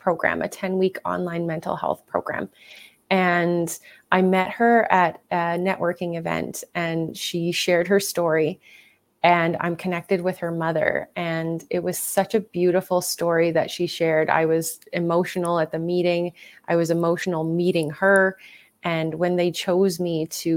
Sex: female